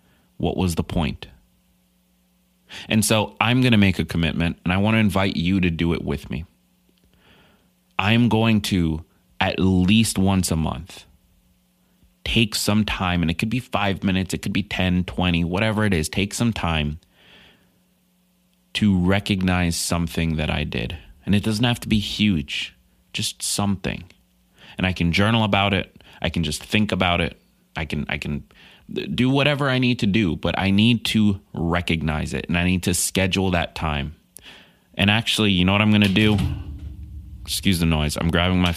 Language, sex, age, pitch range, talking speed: English, male, 30-49, 80-100 Hz, 175 wpm